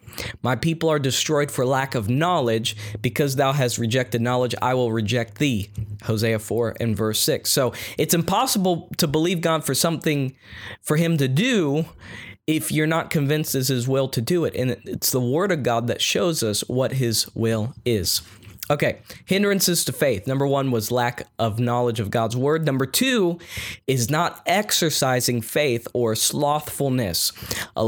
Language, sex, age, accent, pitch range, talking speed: English, male, 20-39, American, 120-165 Hz, 170 wpm